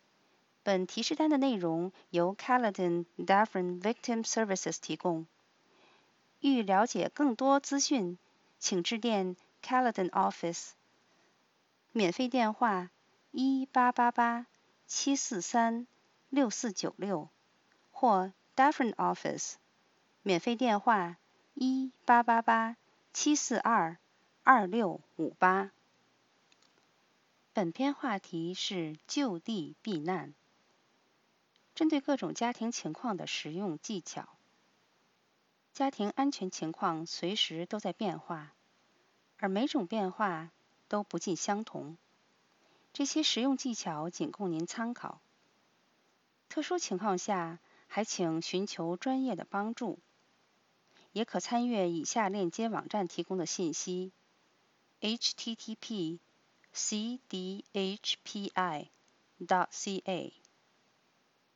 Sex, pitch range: female, 180-245 Hz